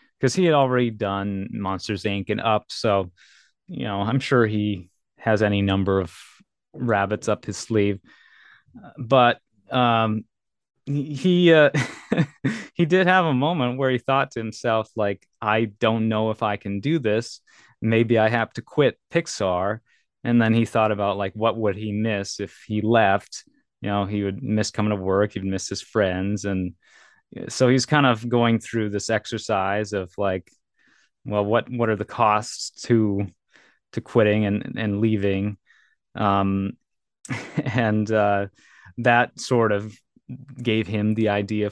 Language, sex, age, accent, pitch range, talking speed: English, male, 30-49, American, 100-120 Hz, 160 wpm